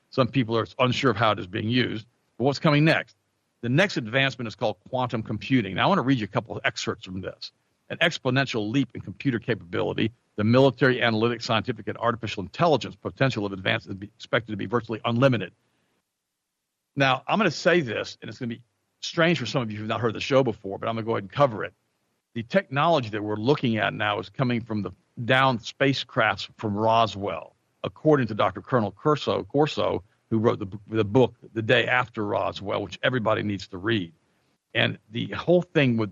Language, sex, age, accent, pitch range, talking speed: English, male, 50-69, American, 105-135 Hz, 205 wpm